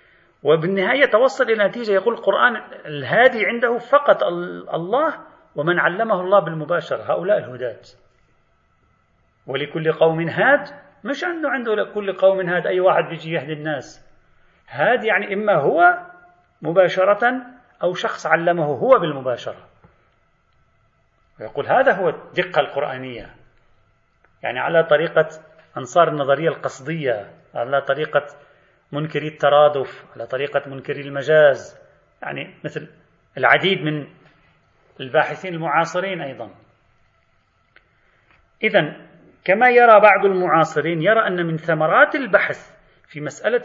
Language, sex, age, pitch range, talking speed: Arabic, male, 40-59, 155-215 Hz, 110 wpm